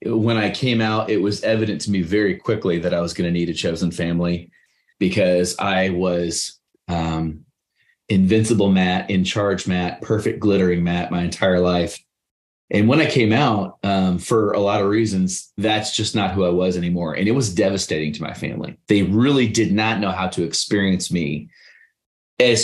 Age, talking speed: 30-49, 185 wpm